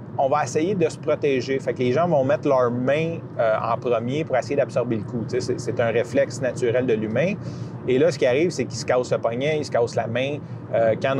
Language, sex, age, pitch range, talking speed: French, male, 30-49, 130-170 Hz, 250 wpm